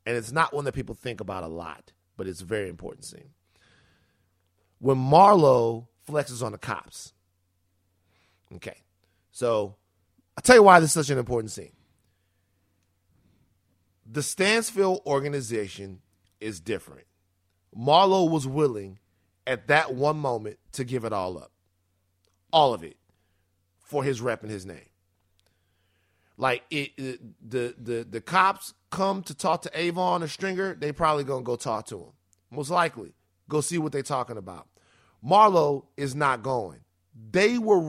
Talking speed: 150 wpm